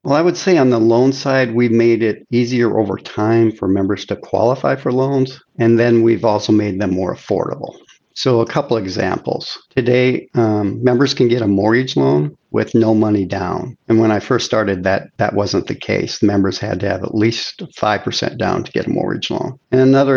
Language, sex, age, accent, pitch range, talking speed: English, male, 50-69, American, 105-125 Hz, 210 wpm